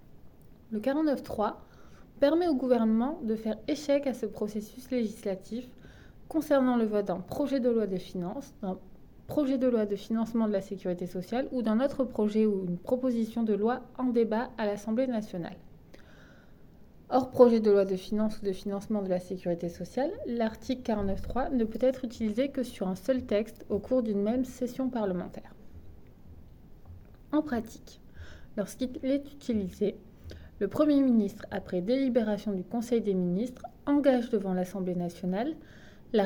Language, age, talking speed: English, 20-39, 155 wpm